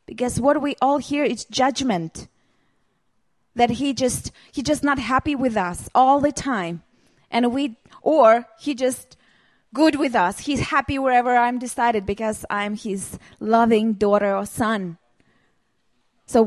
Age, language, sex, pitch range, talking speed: 20-39, Czech, female, 215-280 Hz, 145 wpm